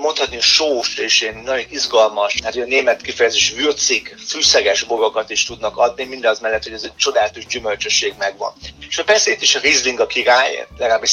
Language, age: Hungarian, 30-49